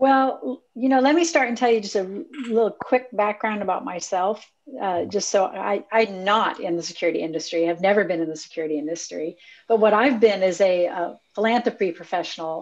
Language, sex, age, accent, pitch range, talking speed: English, female, 40-59, American, 185-225 Hz, 200 wpm